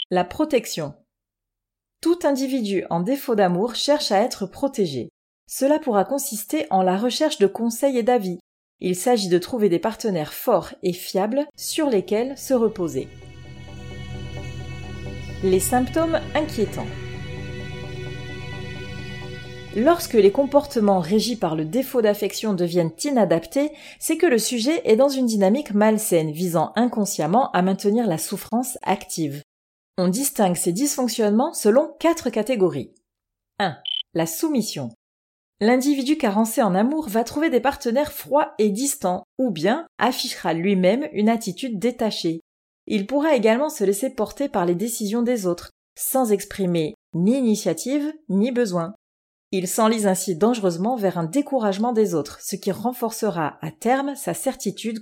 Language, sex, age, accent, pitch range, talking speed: French, female, 30-49, French, 185-255 Hz, 135 wpm